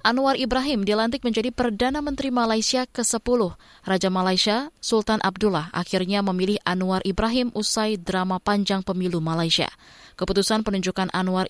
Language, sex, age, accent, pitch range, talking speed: Indonesian, female, 20-39, native, 185-230 Hz, 125 wpm